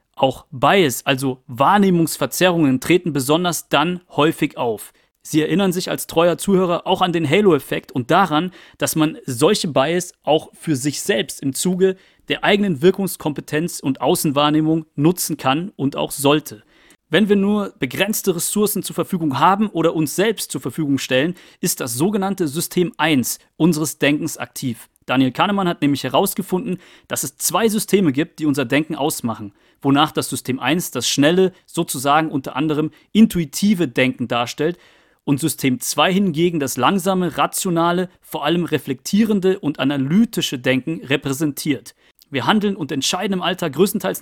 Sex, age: male, 40-59